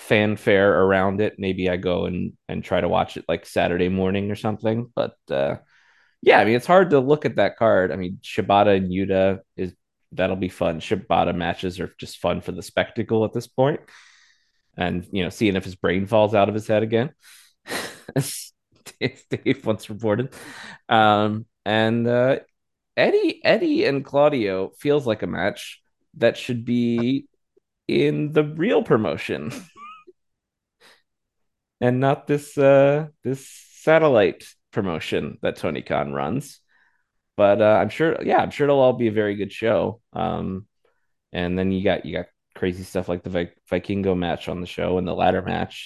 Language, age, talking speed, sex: English, 20-39, 170 wpm, male